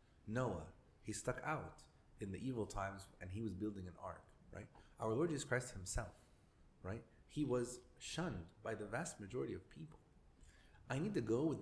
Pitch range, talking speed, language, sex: 95-125 Hz, 180 wpm, English, male